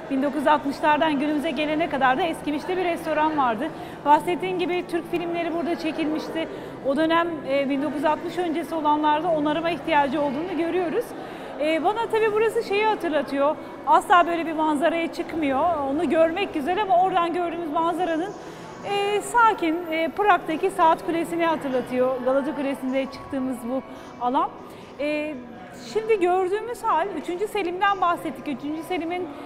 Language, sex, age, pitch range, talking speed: Turkish, female, 40-59, 290-355 Hz, 125 wpm